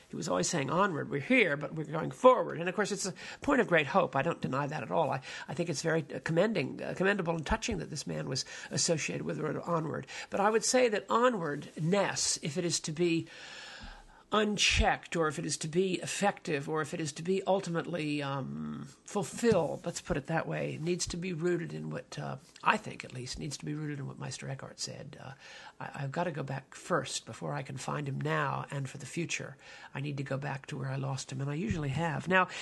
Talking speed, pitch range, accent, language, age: 245 wpm, 145-185 Hz, American, English, 50-69